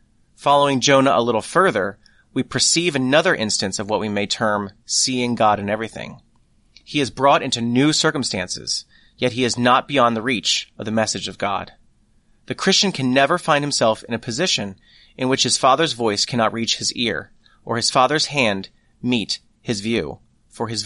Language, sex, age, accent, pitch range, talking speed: English, male, 30-49, American, 110-140 Hz, 180 wpm